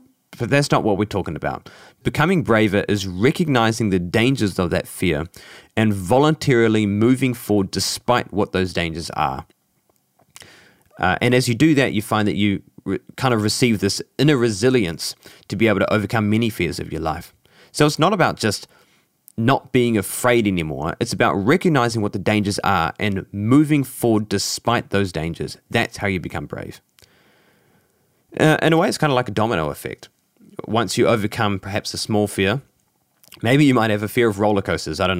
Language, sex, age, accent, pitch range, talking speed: English, male, 20-39, Australian, 100-125 Hz, 180 wpm